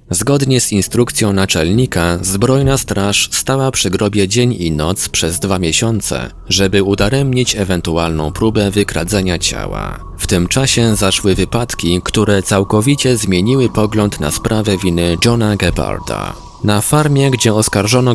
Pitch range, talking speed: 90-120 Hz, 130 wpm